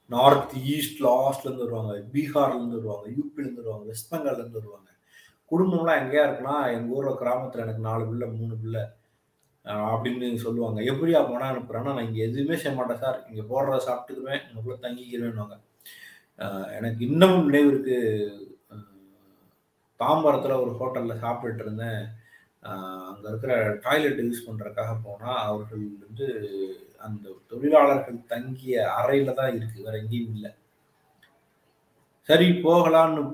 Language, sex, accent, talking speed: Tamil, male, native, 120 wpm